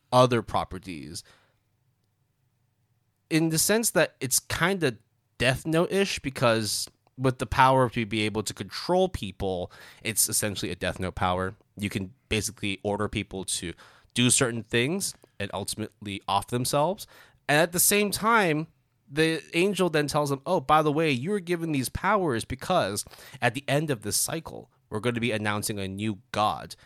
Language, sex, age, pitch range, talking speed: English, male, 20-39, 100-130 Hz, 165 wpm